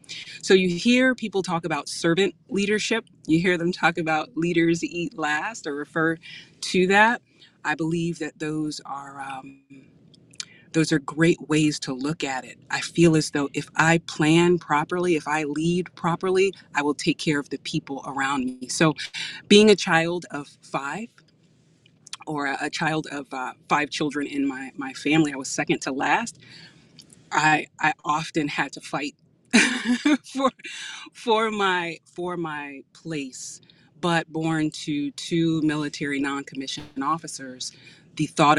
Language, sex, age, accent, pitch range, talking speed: English, female, 30-49, American, 145-175 Hz, 150 wpm